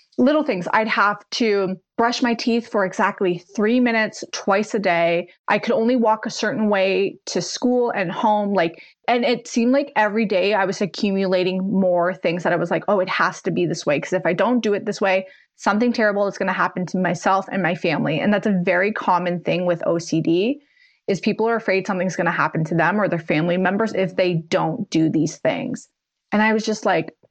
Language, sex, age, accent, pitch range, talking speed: English, female, 20-39, American, 185-245 Hz, 220 wpm